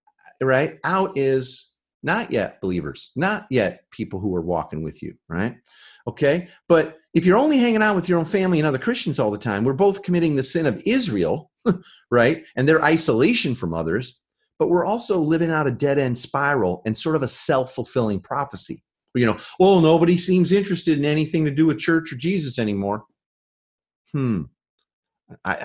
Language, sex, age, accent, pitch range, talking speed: English, male, 40-59, American, 100-165 Hz, 180 wpm